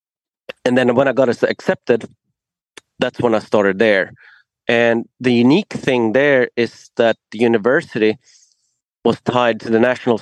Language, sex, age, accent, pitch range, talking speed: English, male, 30-49, Swedish, 110-130 Hz, 145 wpm